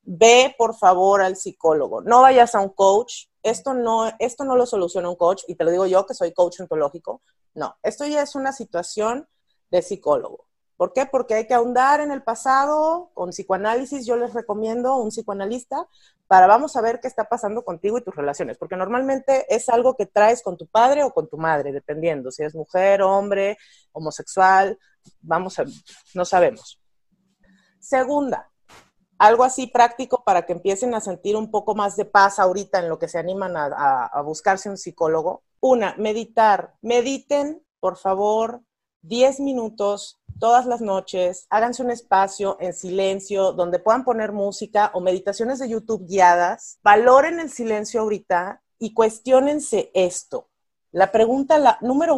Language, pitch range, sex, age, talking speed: Spanish, 185-245 Hz, female, 40-59, 170 wpm